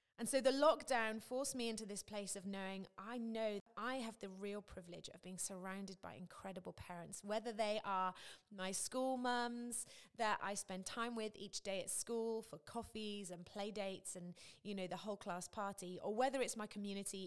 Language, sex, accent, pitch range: English, female, British, 190-235 Hz